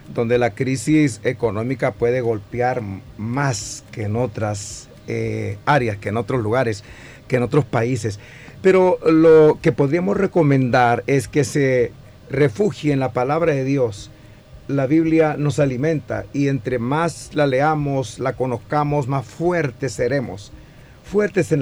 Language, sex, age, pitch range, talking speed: Spanish, male, 50-69, 120-155 Hz, 140 wpm